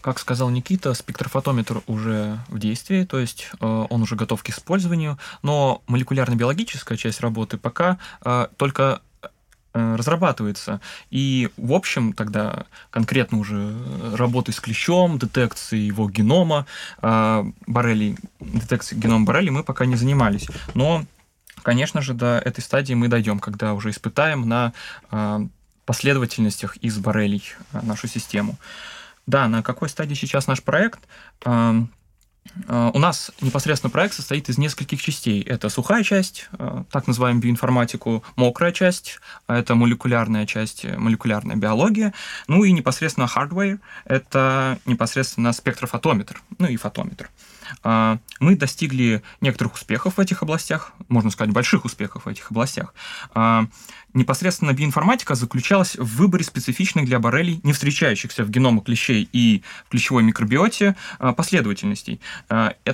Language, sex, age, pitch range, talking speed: Russian, male, 20-39, 115-150 Hz, 120 wpm